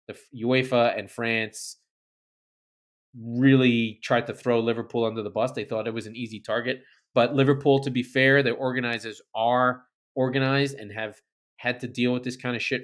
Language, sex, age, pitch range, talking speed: English, male, 20-39, 105-130 Hz, 180 wpm